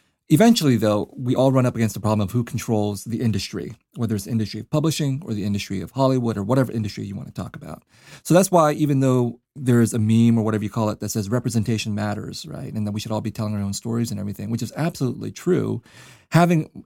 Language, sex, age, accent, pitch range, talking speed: English, male, 30-49, American, 110-135 Hz, 245 wpm